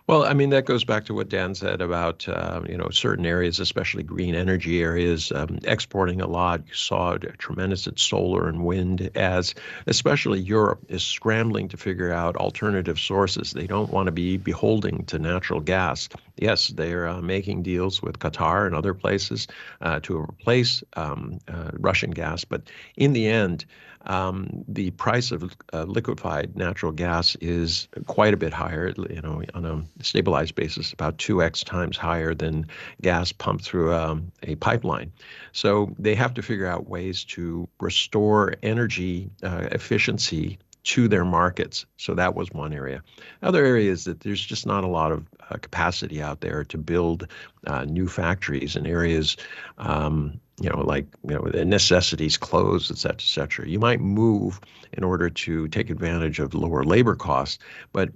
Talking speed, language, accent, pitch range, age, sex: 175 wpm, English, American, 80-100 Hz, 50-69, male